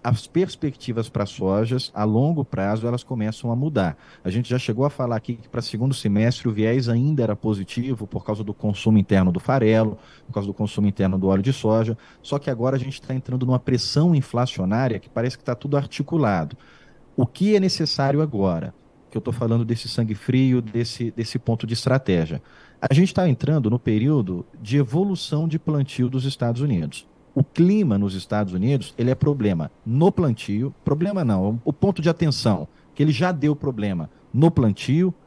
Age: 40-59